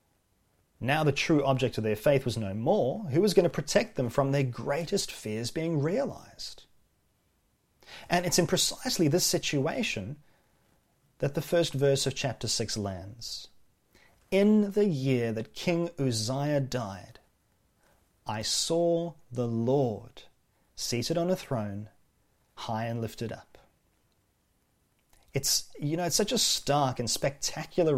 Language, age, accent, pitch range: English, 30-49, Australian, 110-145 Hz